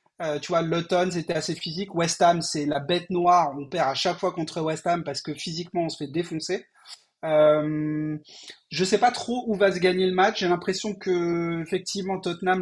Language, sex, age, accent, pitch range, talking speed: French, male, 30-49, French, 165-190 Hz, 210 wpm